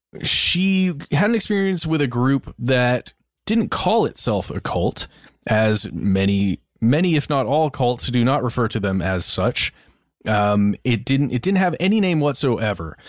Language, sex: English, male